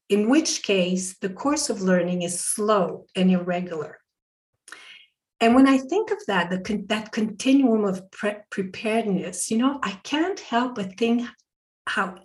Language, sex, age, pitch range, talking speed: English, female, 50-69, 195-265 Hz, 155 wpm